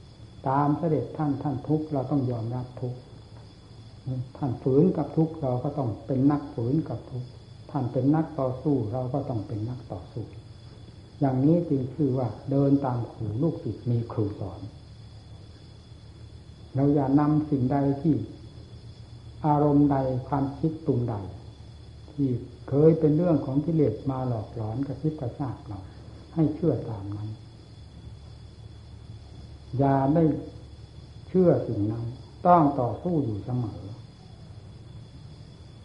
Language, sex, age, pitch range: Thai, male, 60-79, 110-145 Hz